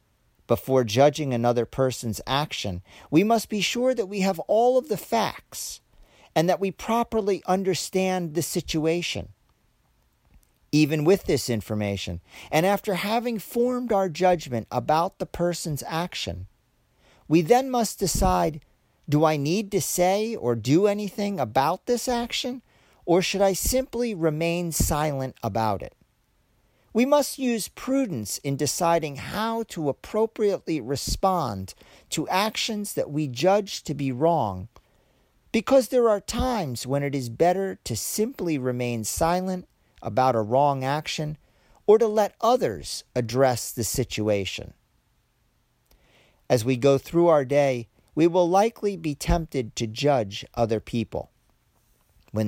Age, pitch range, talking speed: 40-59, 125-200 Hz, 135 wpm